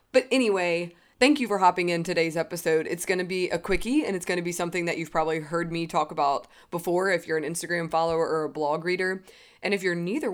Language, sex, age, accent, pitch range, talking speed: English, female, 20-39, American, 165-195 Hz, 245 wpm